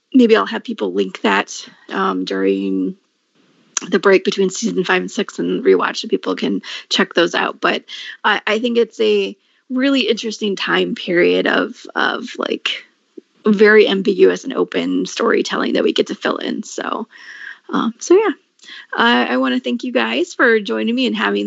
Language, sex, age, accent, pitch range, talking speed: English, female, 30-49, American, 180-260 Hz, 175 wpm